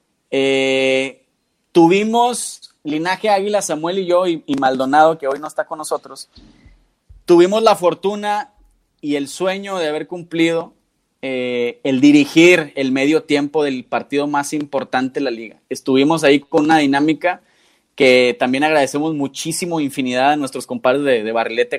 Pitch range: 140-185 Hz